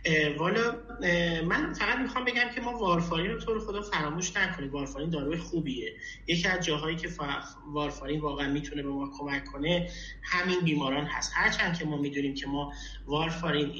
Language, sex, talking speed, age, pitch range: Persian, male, 175 wpm, 30-49, 140-180 Hz